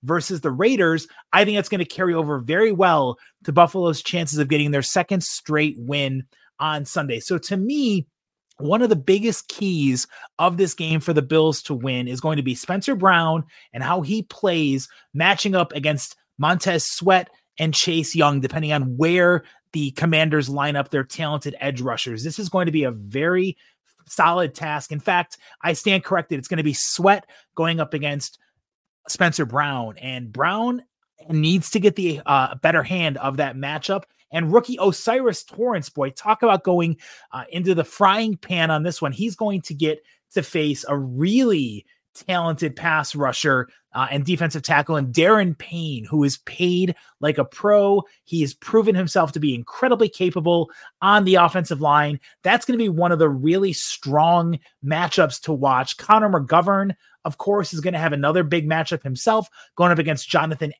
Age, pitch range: 30-49, 145-185 Hz